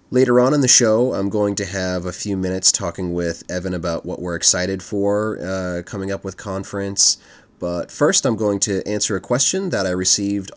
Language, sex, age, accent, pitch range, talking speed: English, male, 30-49, American, 95-115 Hz, 205 wpm